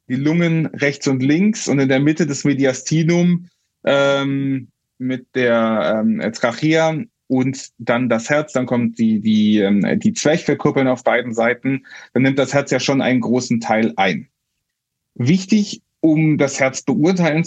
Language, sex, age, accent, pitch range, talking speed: German, male, 30-49, German, 125-155 Hz, 150 wpm